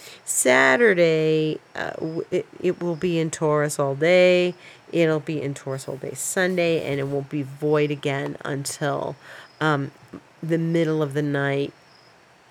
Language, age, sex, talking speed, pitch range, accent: English, 40-59, female, 145 wpm, 145-175 Hz, American